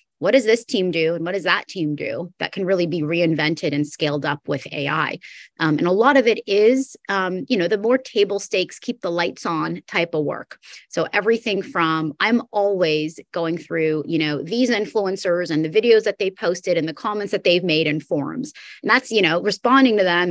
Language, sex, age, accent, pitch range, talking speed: English, female, 30-49, American, 150-200 Hz, 220 wpm